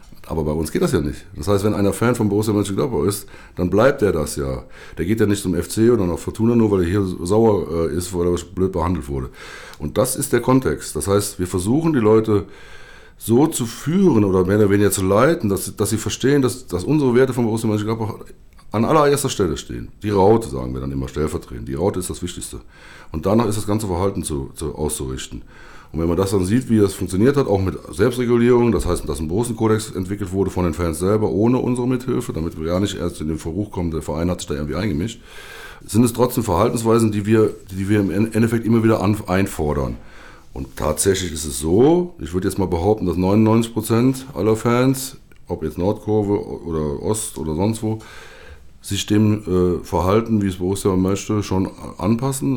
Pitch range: 85-110 Hz